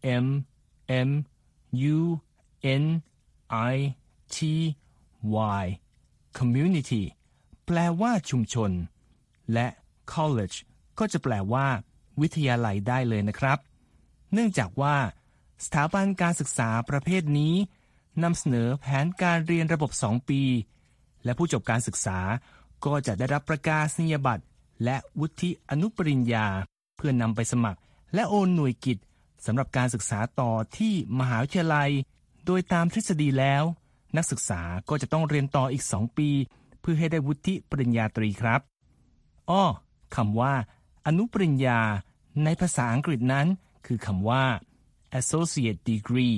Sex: male